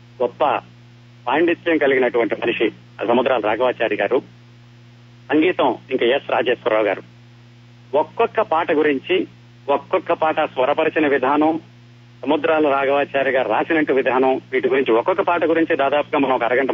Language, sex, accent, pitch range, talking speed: Telugu, male, native, 120-175 Hz, 120 wpm